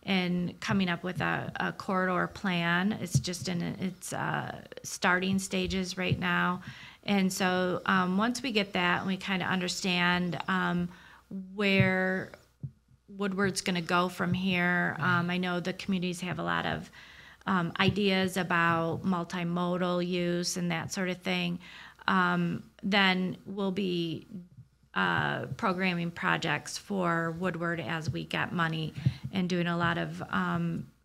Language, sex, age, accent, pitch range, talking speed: English, female, 40-59, American, 175-190 Hz, 145 wpm